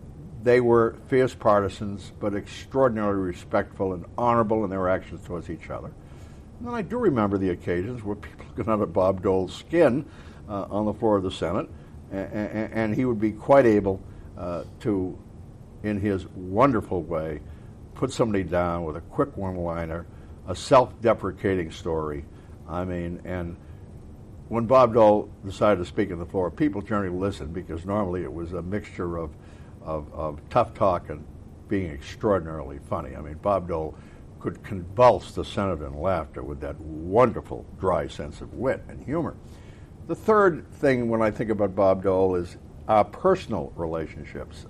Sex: male